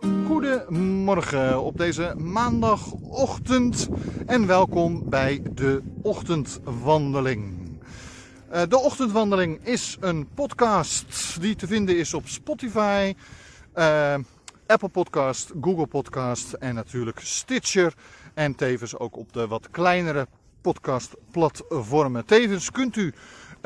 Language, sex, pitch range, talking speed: Dutch, male, 125-185 Hz, 95 wpm